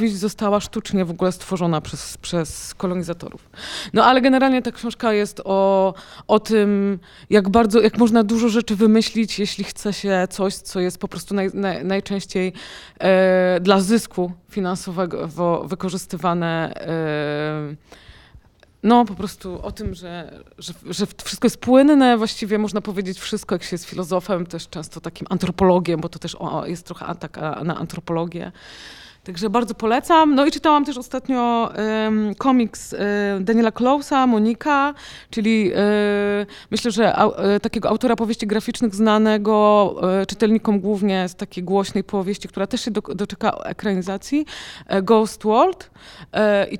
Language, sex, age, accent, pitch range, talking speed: Polish, female, 20-39, native, 185-225 Hz, 145 wpm